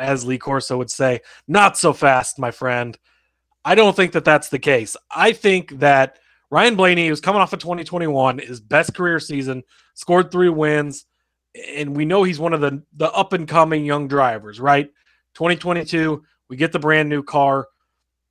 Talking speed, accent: 180 wpm, American